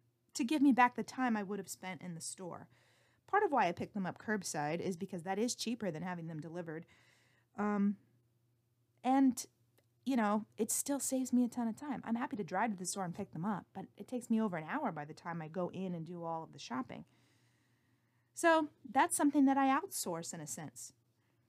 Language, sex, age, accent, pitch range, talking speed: English, female, 30-49, American, 140-235 Hz, 225 wpm